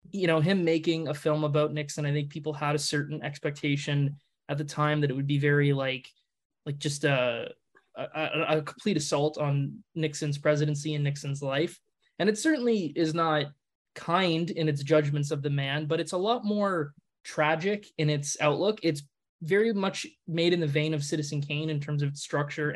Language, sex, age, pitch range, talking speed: English, male, 20-39, 145-165 Hz, 190 wpm